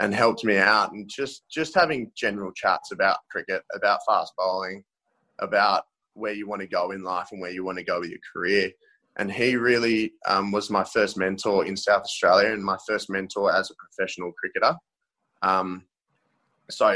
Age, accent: 20-39, Australian